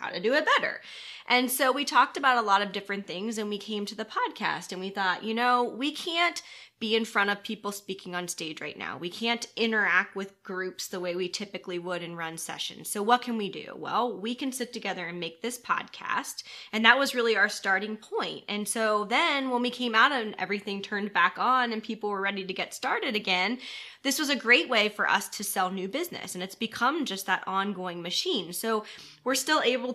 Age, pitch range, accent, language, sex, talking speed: 20-39, 195-250 Hz, American, English, female, 230 wpm